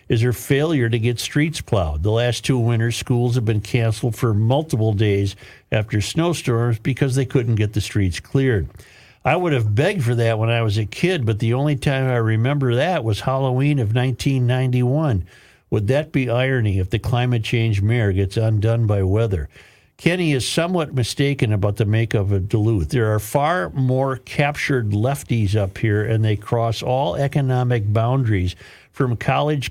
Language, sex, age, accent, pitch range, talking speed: English, male, 50-69, American, 110-135 Hz, 180 wpm